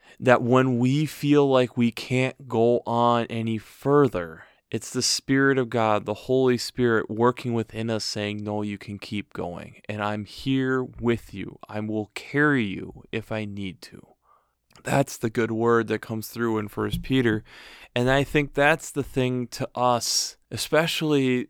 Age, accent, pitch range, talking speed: 20-39, American, 110-130 Hz, 165 wpm